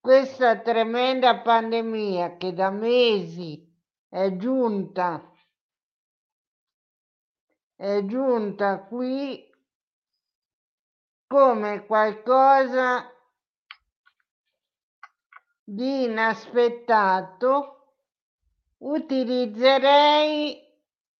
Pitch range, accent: 215-270 Hz, native